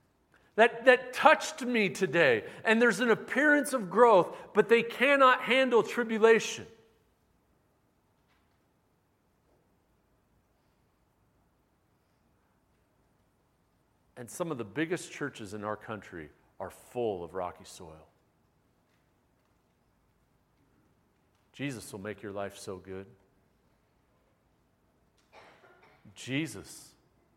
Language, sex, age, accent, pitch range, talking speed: English, male, 40-59, American, 105-145 Hz, 85 wpm